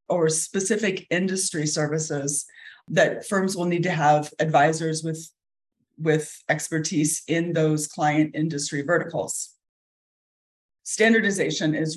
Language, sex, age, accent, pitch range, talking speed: English, female, 40-59, American, 160-210 Hz, 105 wpm